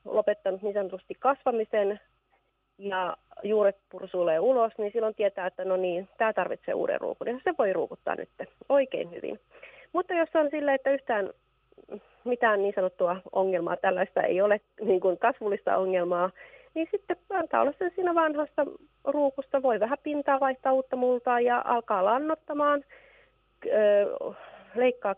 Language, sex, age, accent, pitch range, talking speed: Finnish, female, 30-49, native, 200-280 Hz, 135 wpm